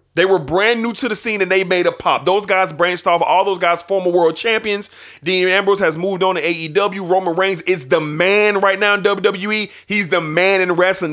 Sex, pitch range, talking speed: male, 175-230 Hz, 230 wpm